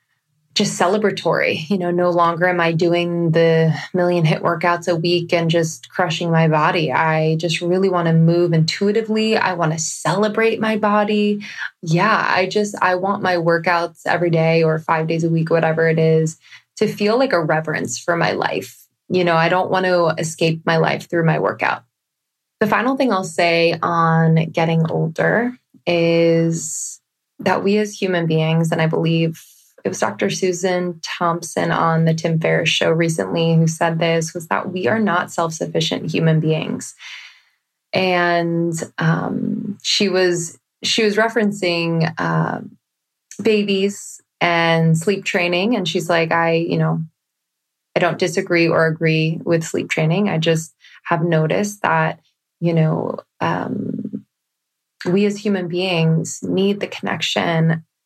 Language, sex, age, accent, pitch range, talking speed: English, female, 20-39, American, 165-185 Hz, 155 wpm